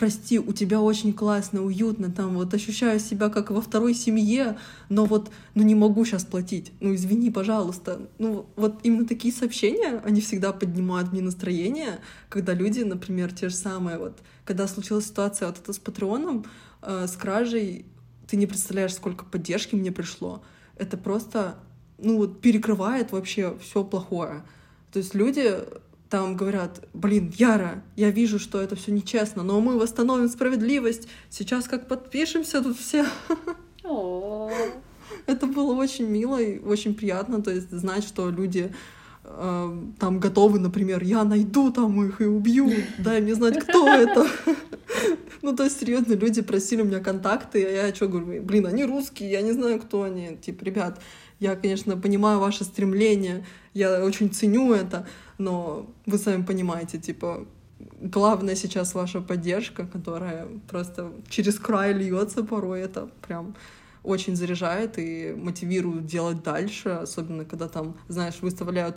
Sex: female